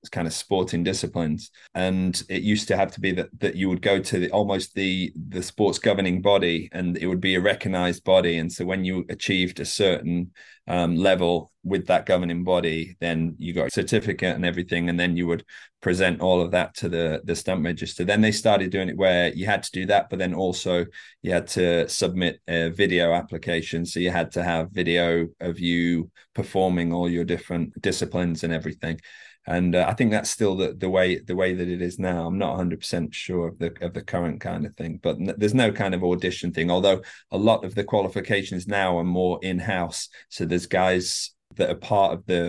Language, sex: English, male